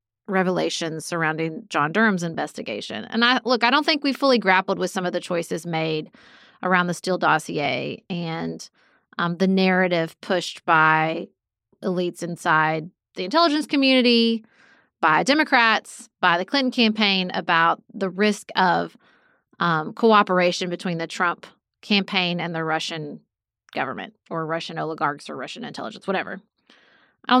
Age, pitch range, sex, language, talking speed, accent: 30-49, 180-240 Hz, female, English, 140 wpm, American